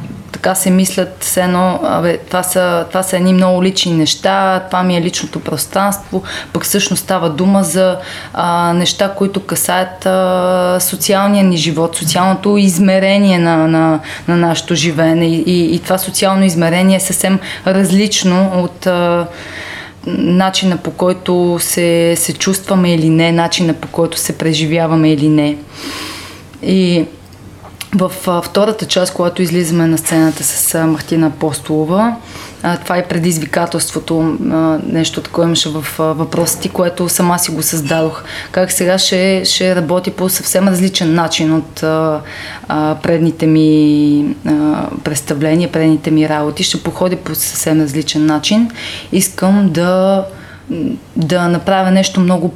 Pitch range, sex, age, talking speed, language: 160-185 Hz, female, 20-39, 130 wpm, Bulgarian